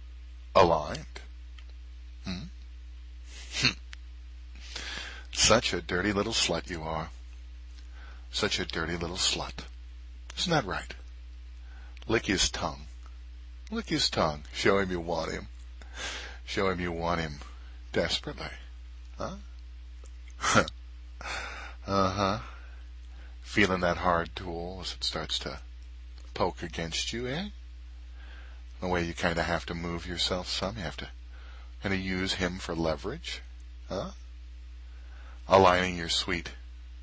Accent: American